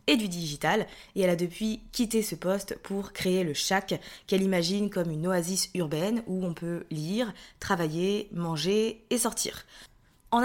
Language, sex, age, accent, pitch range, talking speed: French, female, 20-39, French, 185-230 Hz, 165 wpm